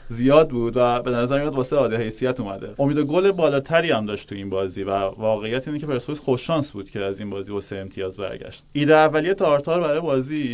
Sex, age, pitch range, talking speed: male, 30-49, 115-140 Hz, 210 wpm